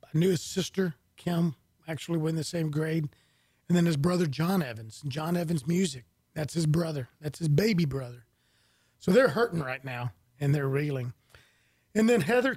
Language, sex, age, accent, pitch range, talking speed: English, male, 40-59, American, 145-195 Hz, 180 wpm